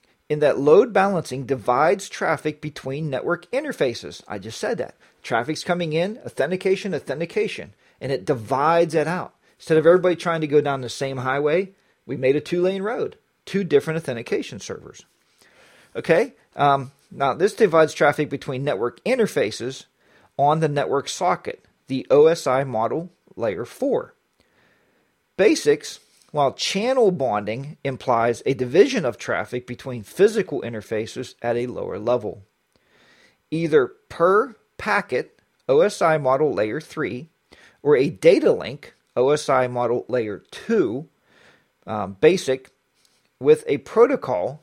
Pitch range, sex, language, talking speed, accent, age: 130-190 Hz, male, English, 130 wpm, American, 40-59